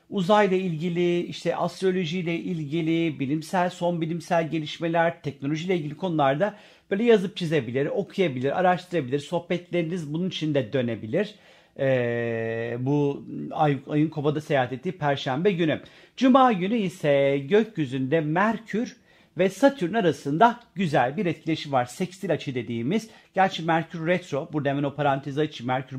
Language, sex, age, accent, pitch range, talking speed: Turkish, male, 50-69, native, 140-185 Hz, 130 wpm